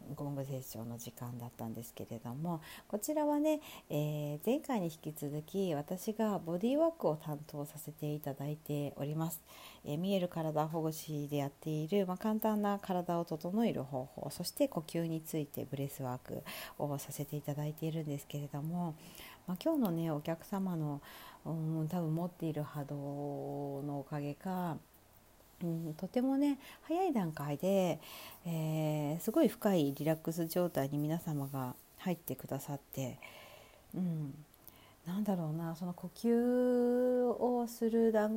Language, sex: Japanese, female